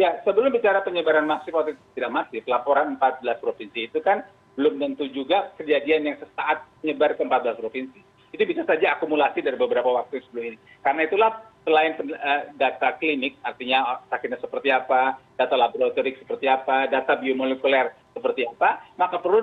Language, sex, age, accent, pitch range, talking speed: Indonesian, male, 40-59, native, 135-220 Hz, 150 wpm